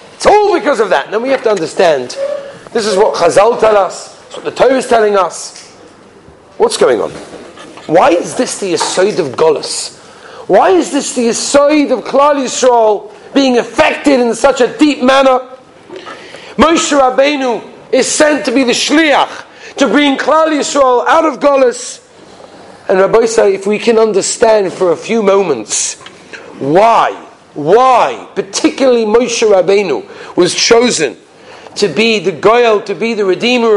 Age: 40-59